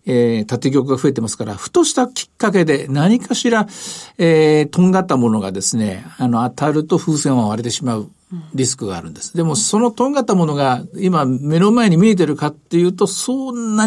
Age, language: 50-69, Japanese